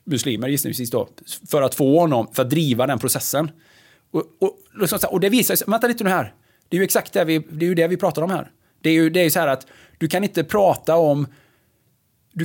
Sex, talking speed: male, 245 wpm